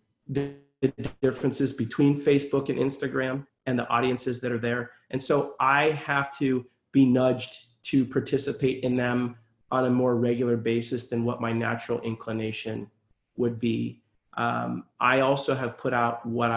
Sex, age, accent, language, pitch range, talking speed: male, 30-49, American, English, 115-130 Hz, 150 wpm